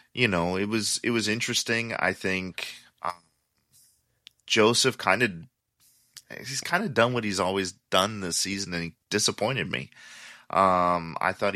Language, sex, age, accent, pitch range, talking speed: English, male, 30-49, American, 85-100 Hz, 155 wpm